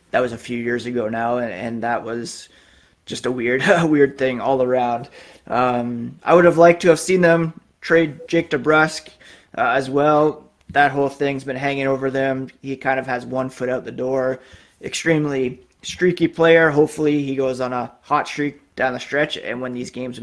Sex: male